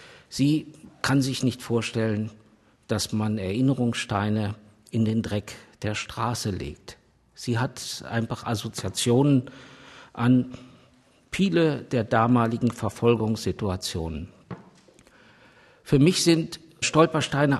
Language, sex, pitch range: German, male, 110-135 Hz